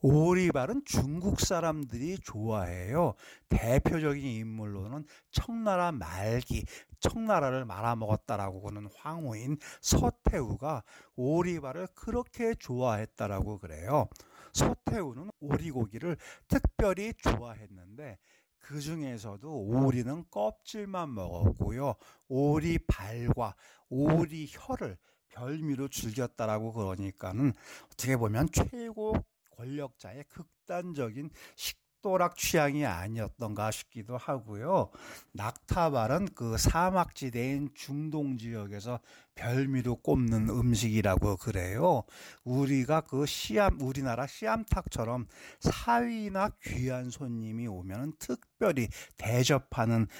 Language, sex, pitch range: Korean, male, 110-150 Hz